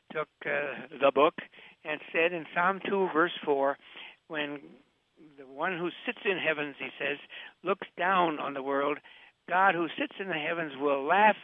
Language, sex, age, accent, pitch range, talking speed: English, male, 60-79, American, 150-200 Hz, 175 wpm